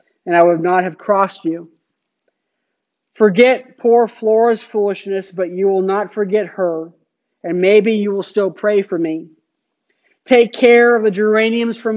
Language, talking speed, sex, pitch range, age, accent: English, 155 wpm, male, 180-220 Hz, 50-69, American